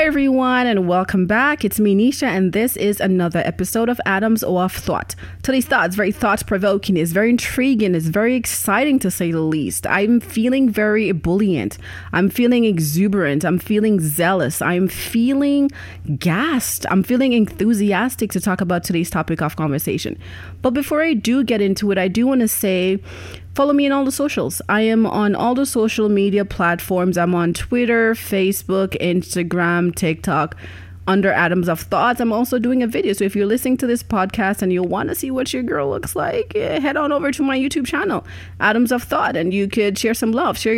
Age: 30-49